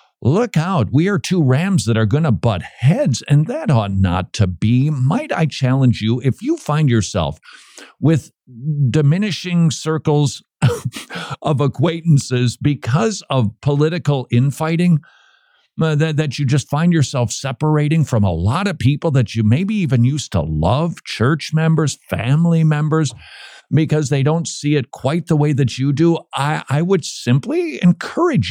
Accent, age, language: American, 50-69, English